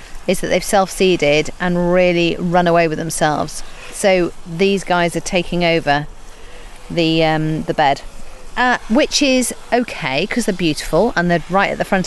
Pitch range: 165-195 Hz